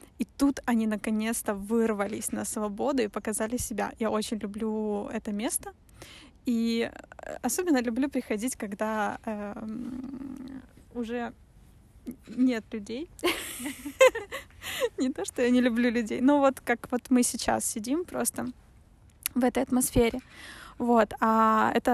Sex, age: female, 20-39